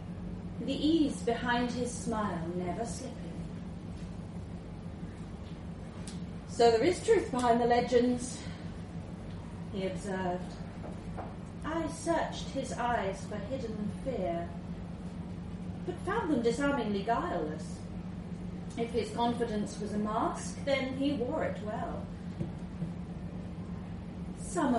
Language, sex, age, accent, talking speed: English, female, 30-49, British, 95 wpm